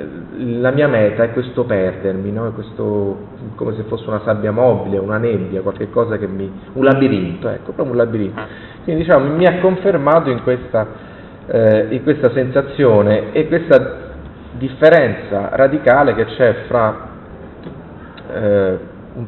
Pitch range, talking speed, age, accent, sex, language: 105-125 Hz, 140 wpm, 30-49, native, male, Italian